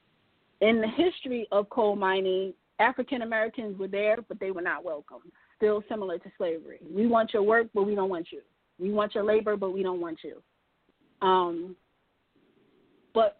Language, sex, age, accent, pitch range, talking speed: English, female, 30-49, American, 190-225 Hz, 175 wpm